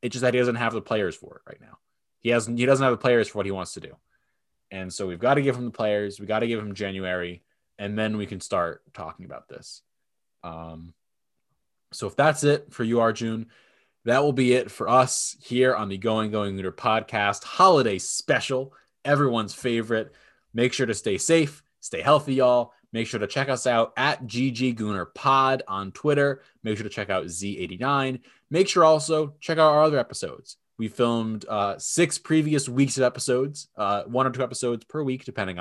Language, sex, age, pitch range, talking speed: English, male, 20-39, 105-135 Hz, 205 wpm